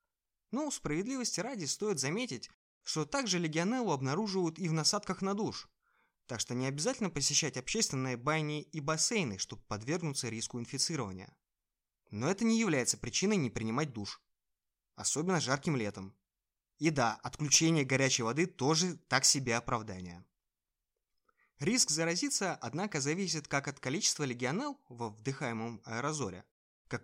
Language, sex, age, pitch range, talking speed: Russian, male, 20-39, 120-165 Hz, 130 wpm